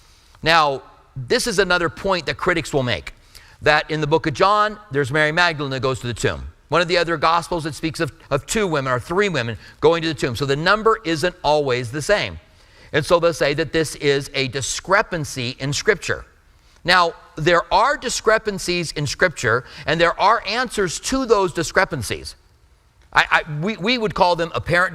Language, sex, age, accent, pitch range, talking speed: English, male, 40-59, American, 135-175 Hz, 190 wpm